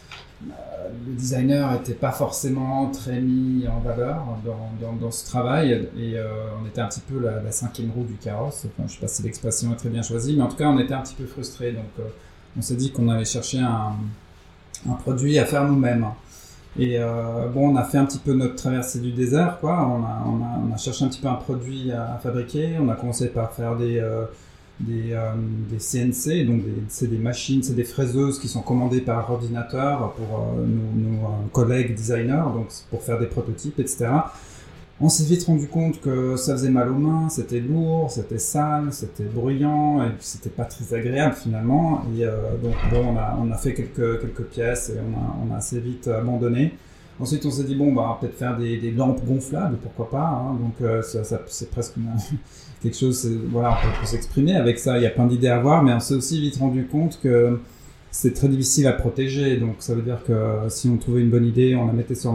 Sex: male